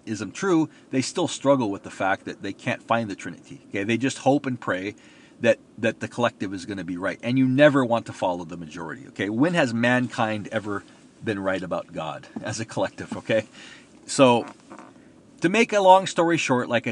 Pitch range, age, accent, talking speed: 110-140 Hz, 40-59, American, 205 wpm